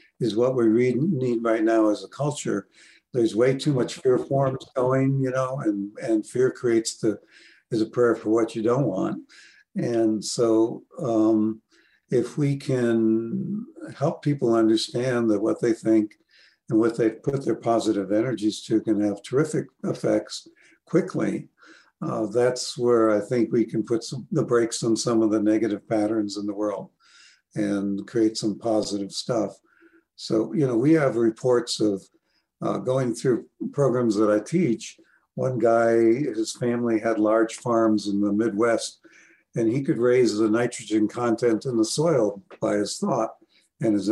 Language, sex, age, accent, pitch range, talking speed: English, male, 60-79, American, 110-130 Hz, 165 wpm